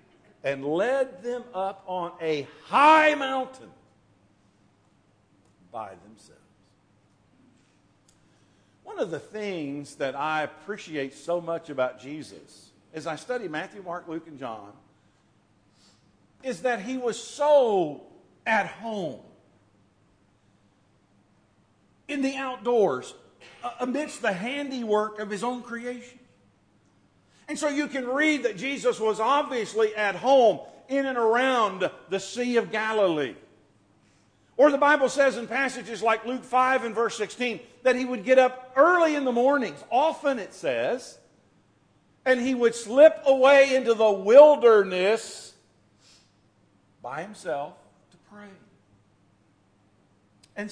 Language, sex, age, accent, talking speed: English, male, 50-69, American, 120 wpm